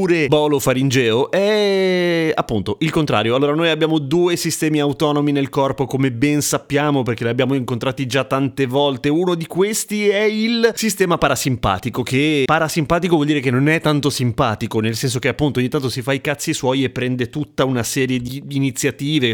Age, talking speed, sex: 30-49, 180 wpm, male